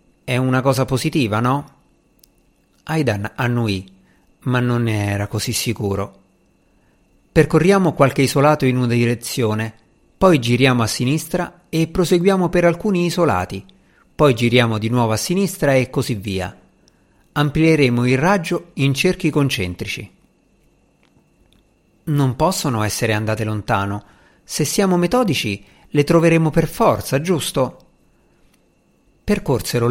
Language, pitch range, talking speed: Italian, 115-165 Hz, 115 wpm